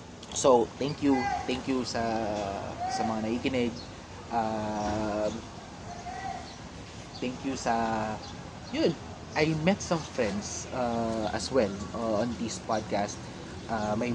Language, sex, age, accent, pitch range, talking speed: Filipino, male, 20-39, native, 115-165 Hz, 115 wpm